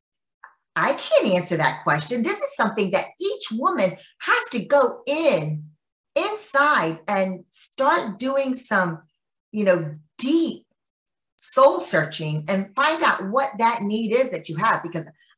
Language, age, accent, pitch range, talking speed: English, 40-59, American, 175-245 Hz, 140 wpm